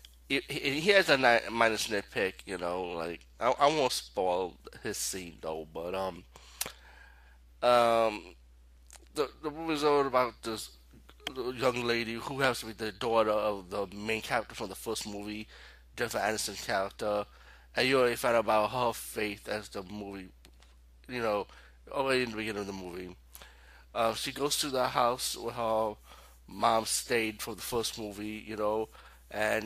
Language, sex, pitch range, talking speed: English, male, 100-120 Hz, 165 wpm